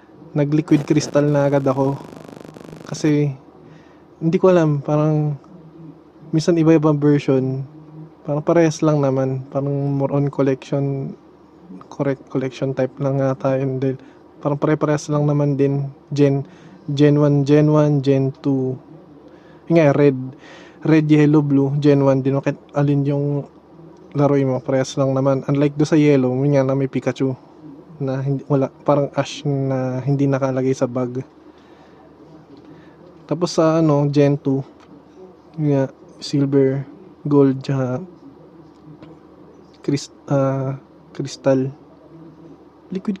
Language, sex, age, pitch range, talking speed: Filipino, male, 20-39, 135-160 Hz, 120 wpm